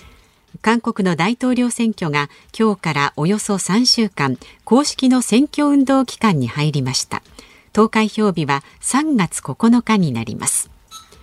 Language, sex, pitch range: Japanese, female, 160-240 Hz